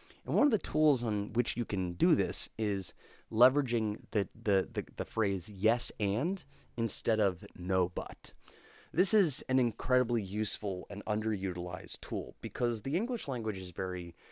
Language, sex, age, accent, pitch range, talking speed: English, male, 30-49, American, 90-115 Hz, 160 wpm